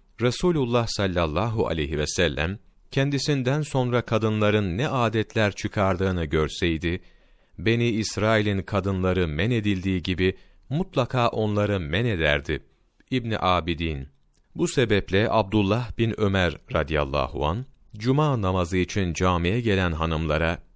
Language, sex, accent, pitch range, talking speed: Turkish, male, native, 85-120 Hz, 105 wpm